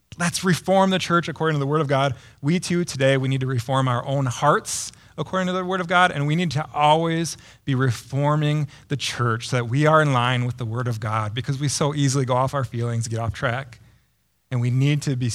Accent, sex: American, male